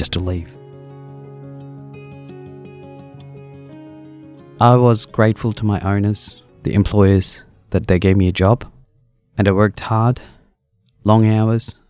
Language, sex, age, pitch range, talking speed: English, male, 30-49, 95-120 Hz, 115 wpm